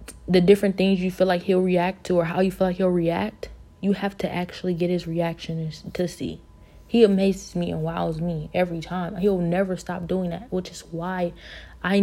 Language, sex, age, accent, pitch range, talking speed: English, female, 20-39, American, 165-185 Hz, 210 wpm